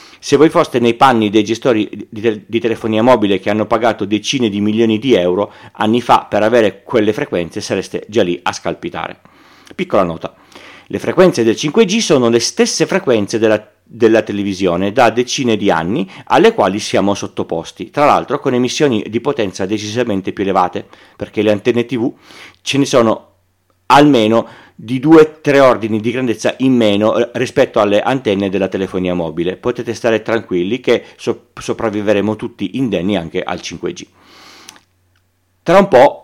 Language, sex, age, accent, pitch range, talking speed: Italian, male, 40-59, native, 100-125 Hz, 155 wpm